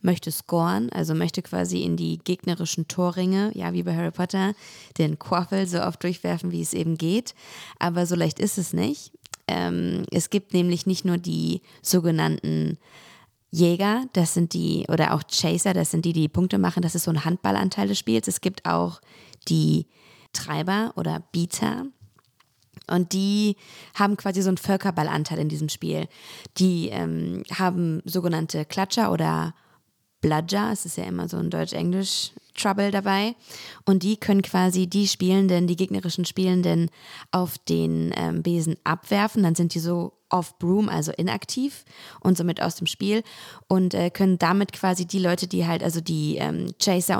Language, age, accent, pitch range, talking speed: German, 20-39, German, 155-190 Hz, 165 wpm